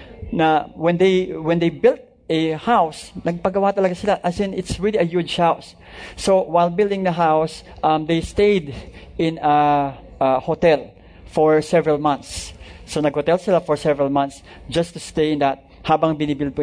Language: English